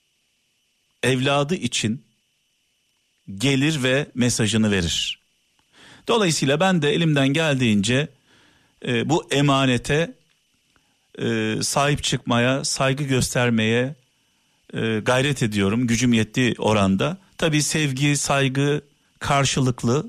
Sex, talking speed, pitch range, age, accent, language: male, 85 wpm, 115-145 Hz, 50-69, native, Turkish